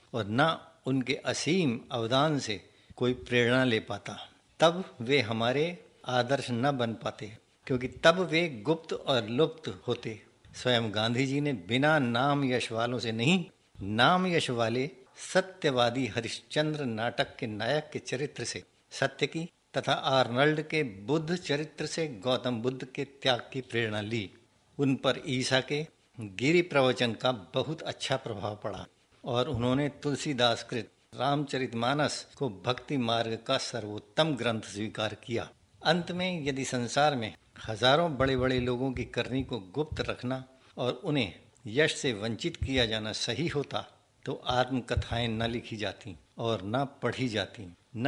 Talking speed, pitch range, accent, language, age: 145 wpm, 115-145 Hz, native, Hindi, 60-79